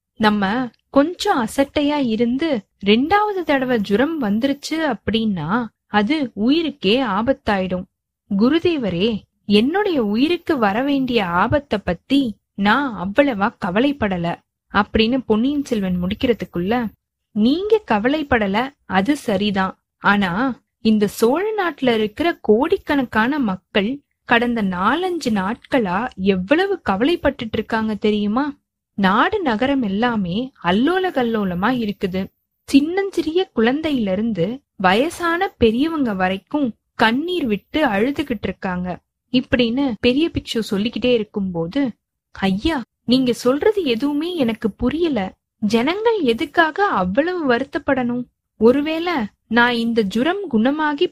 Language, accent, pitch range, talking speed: Tamil, native, 215-290 Hz, 95 wpm